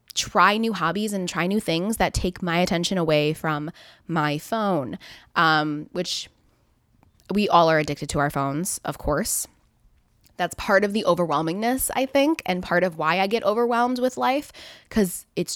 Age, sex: 20-39, female